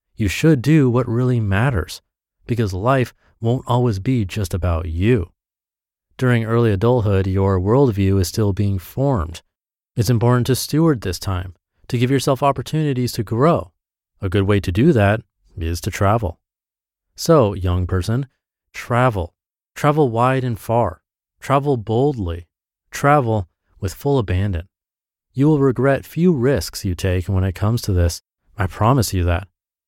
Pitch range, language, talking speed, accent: 95-135 Hz, English, 150 wpm, American